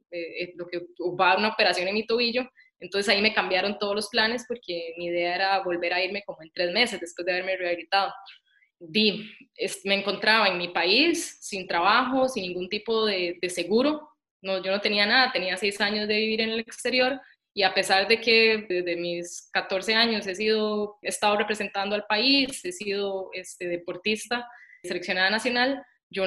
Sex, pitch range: female, 185-225 Hz